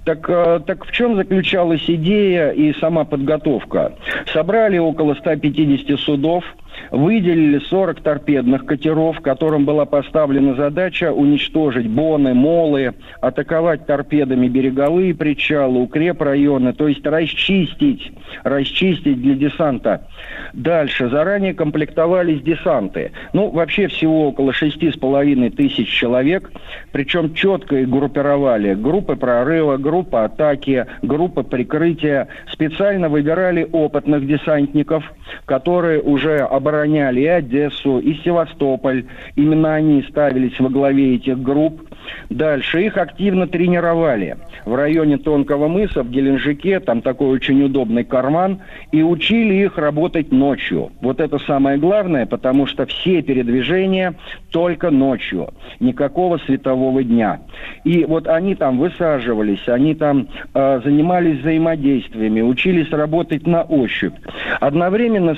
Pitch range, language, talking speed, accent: 140-170 Hz, Russian, 110 wpm, native